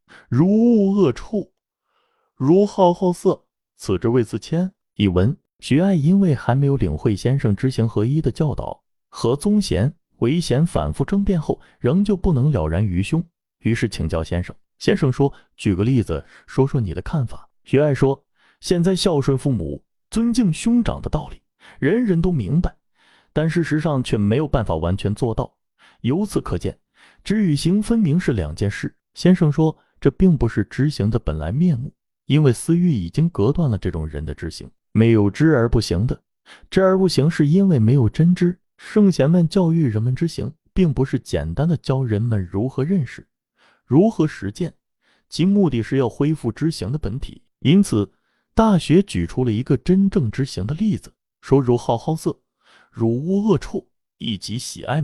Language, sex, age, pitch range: Chinese, male, 30-49, 115-175 Hz